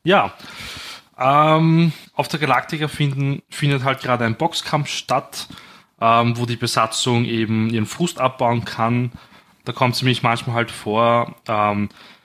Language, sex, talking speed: German, male, 135 wpm